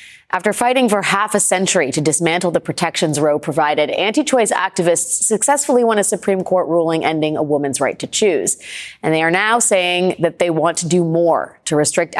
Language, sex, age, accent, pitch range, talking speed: English, female, 30-49, American, 155-200 Hz, 190 wpm